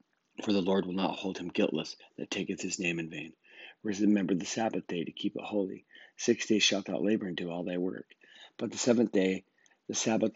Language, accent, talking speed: English, American, 225 wpm